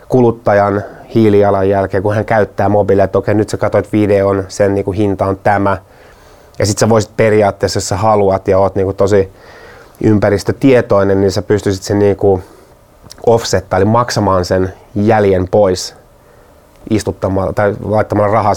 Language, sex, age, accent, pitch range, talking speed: Finnish, male, 30-49, native, 95-110 Hz, 145 wpm